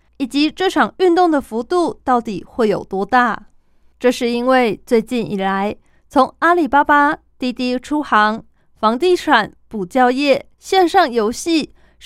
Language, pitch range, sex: Chinese, 220-295 Hz, female